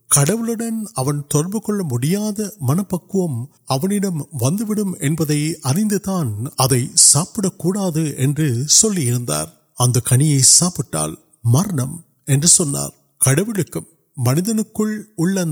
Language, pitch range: Urdu, 135-190 Hz